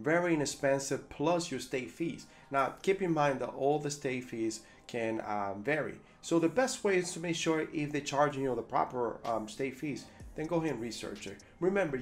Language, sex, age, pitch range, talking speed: English, male, 30-49, 130-165 Hz, 215 wpm